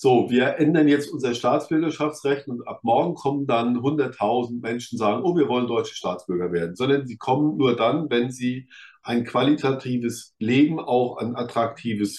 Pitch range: 115-145 Hz